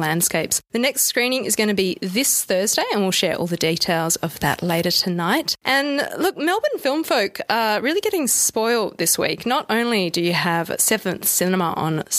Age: 20-39